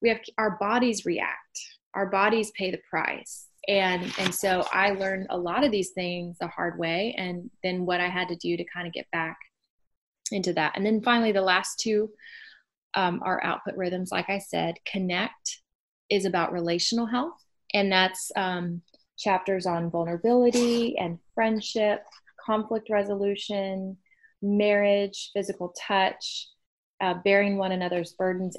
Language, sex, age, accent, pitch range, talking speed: English, female, 20-39, American, 180-220 Hz, 155 wpm